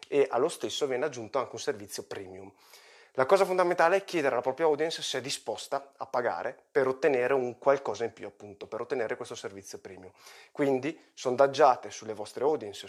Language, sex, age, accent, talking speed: Italian, male, 20-39, native, 180 wpm